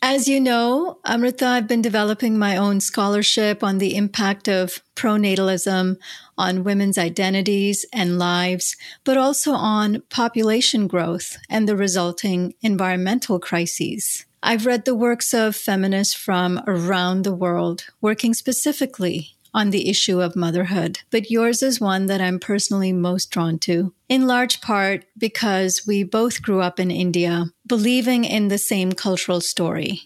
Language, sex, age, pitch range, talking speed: English, female, 40-59, 185-230 Hz, 145 wpm